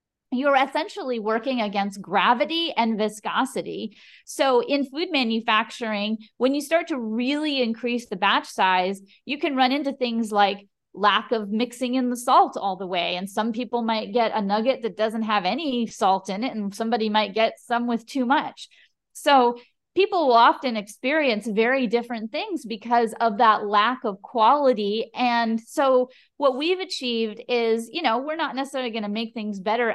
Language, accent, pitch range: English, American, 210-265 Hz